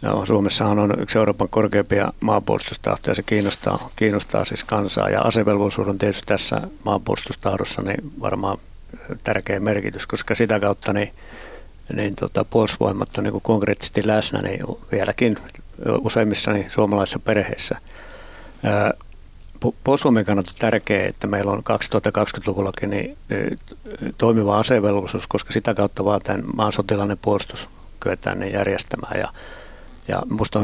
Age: 60-79